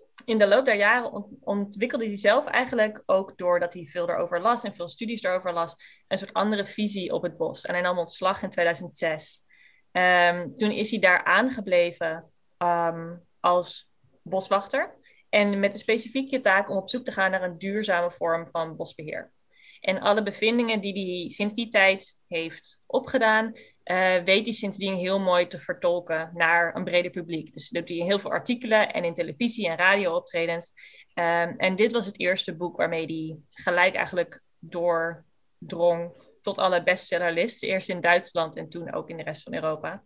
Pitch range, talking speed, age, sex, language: 175-220 Hz, 180 wpm, 20-39, female, Dutch